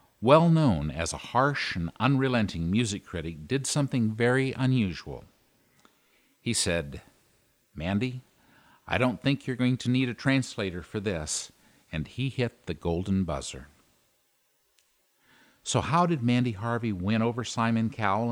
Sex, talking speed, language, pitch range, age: male, 135 wpm, English, 95-130 Hz, 50-69